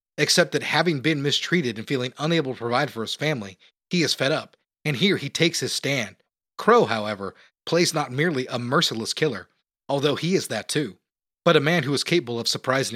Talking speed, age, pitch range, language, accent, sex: 205 wpm, 30-49, 125-160 Hz, English, American, male